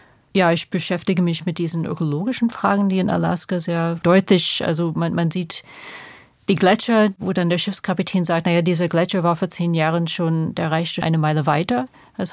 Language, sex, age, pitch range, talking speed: German, female, 30-49, 165-190 Hz, 185 wpm